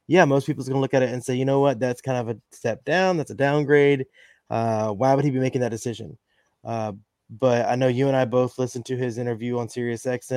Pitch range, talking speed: 120-130 Hz, 250 wpm